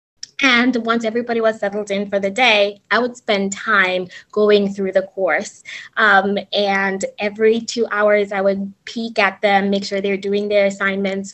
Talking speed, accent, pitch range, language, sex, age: 175 wpm, American, 195-230 Hz, English, female, 20-39